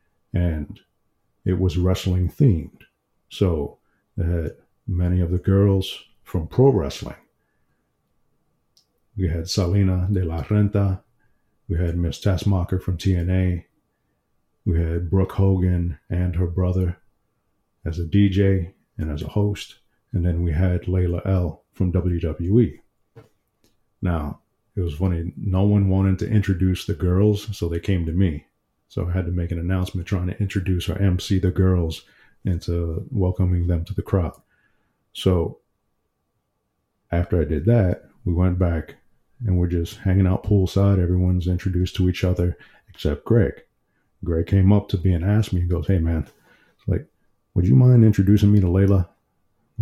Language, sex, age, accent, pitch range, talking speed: English, male, 50-69, American, 85-100 Hz, 155 wpm